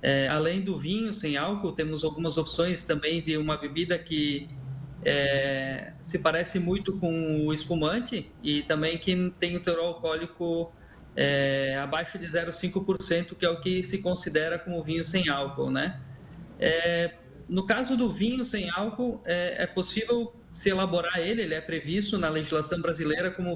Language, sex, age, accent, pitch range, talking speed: Portuguese, male, 20-39, Brazilian, 160-200 Hz, 160 wpm